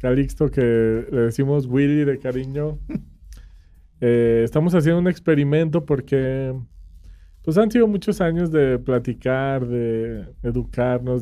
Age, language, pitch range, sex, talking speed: 20-39, Spanish, 115-140 Hz, male, 120 wpm